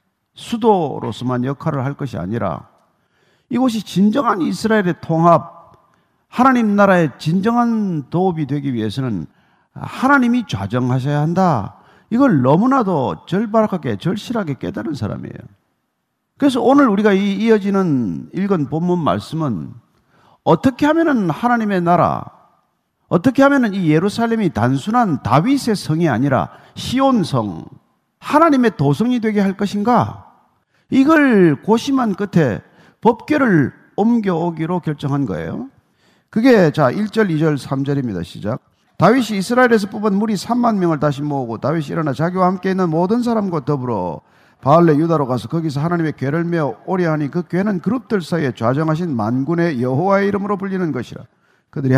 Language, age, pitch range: Korean, 50-69, 150-220 Hz